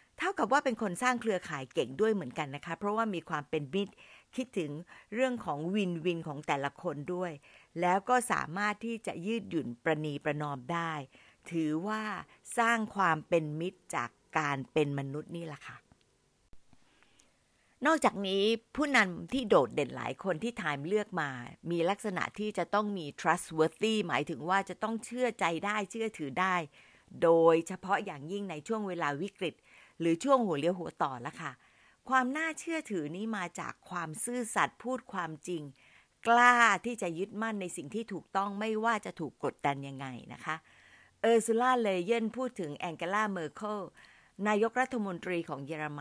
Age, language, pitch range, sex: 60-79, Thai, 155-220 Hz, female